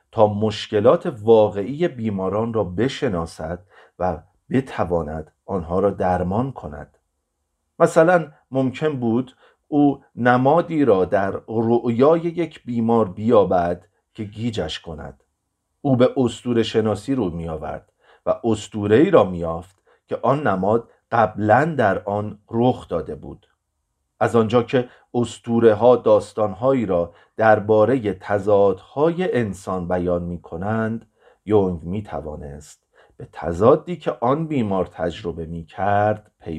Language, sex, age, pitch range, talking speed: Persian, male, 50-69, 90-125 Hz, 120 wpm